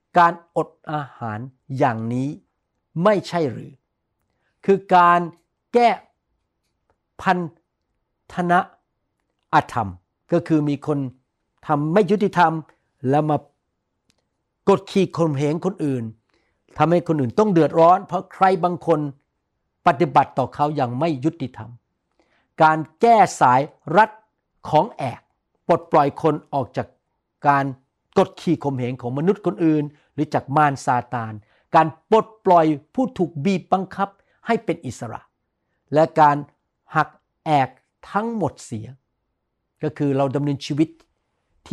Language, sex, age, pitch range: Thai, male, 60-79, 135-175 Hz